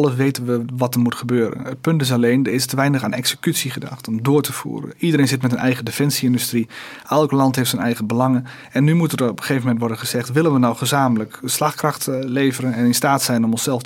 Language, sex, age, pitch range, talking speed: Dutch, male, 30-49, 120-145 Hz, 240 wpm